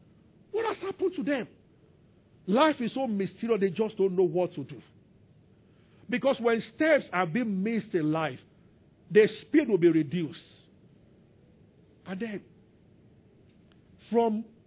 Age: 50-69